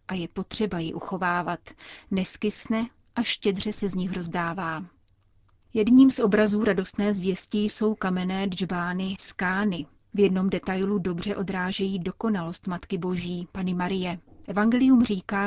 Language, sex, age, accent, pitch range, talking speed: Czech, female, 30-49, native, 185-210 Hz, 130 wpm